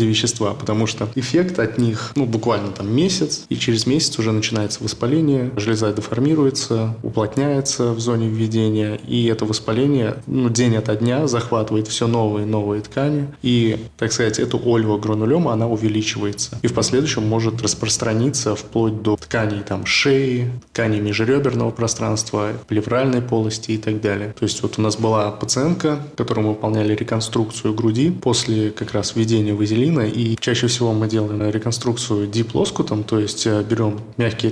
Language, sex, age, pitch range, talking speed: Russian, male, 20-39, 110-120 Hz, 155 wpm